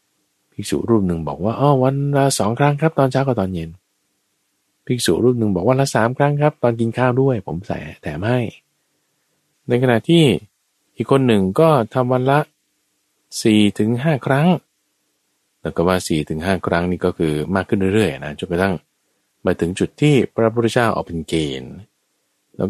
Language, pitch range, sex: Thai, 95-130 Hz, male